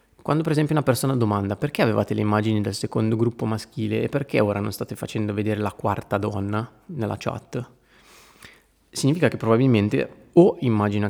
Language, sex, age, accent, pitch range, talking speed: Italian, male, 20-39, native, 105-125 Hz, 170 wpm